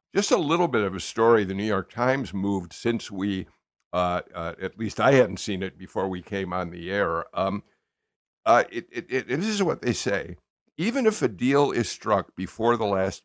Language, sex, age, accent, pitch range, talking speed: English, male, 60-79, American, 95-130 Hz, 200 wpm